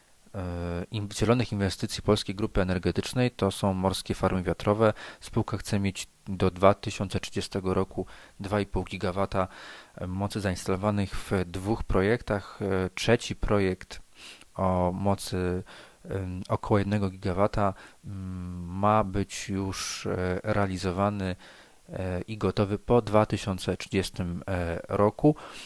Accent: native